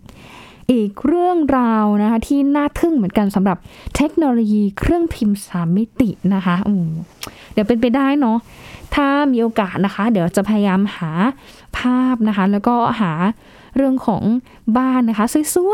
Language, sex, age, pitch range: Thai, female, 10-29, 205-270 Hz